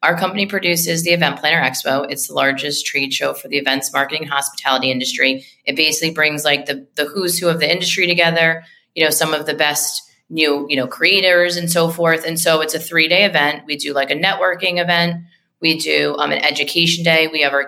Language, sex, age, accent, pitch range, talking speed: English, female, 30-49, American, 145-170 Hz, 220 wpm